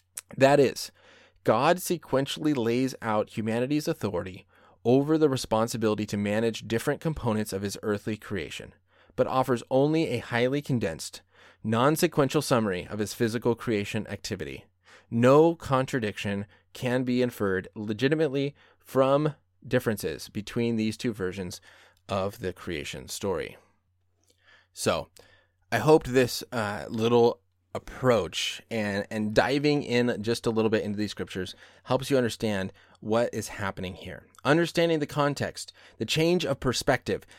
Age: 20-39